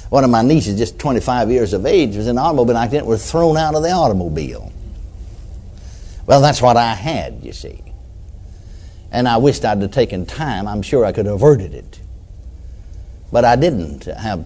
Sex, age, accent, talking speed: male, 60-79, American, 185 wpm